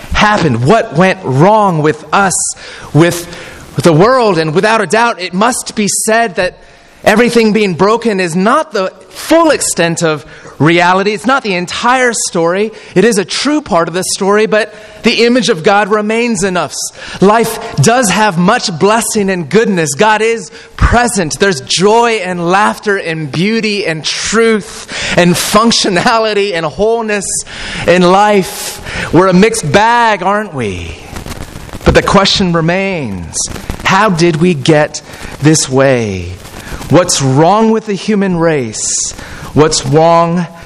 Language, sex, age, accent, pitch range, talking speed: English, male, 30-49, American, 155-215 Hz, 145 wpm